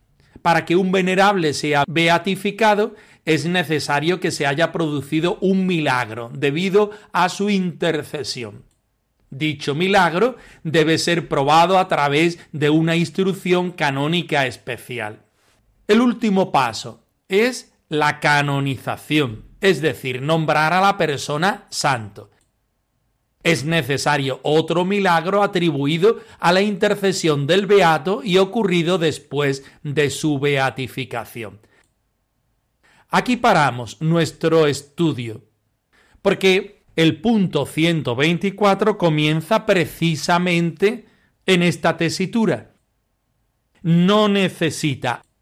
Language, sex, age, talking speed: Spanish, male, 40-59, 100 wpm